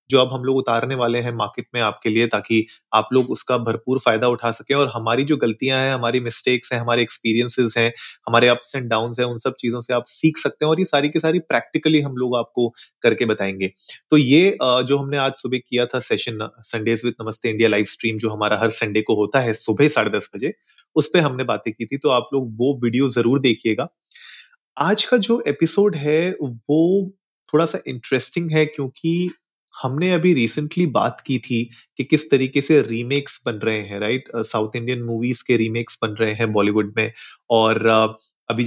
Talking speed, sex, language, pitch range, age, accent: 190 wpm, male, Hindi, 115-145 Hz, 30-49, native